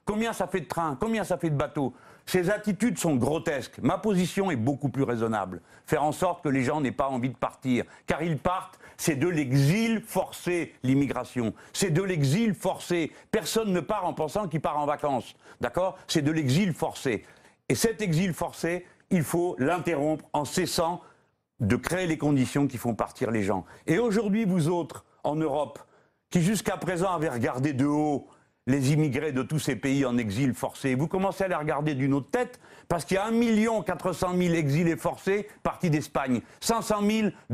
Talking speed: 190 wpm